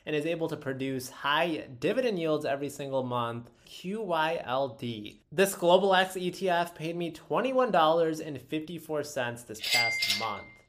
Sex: male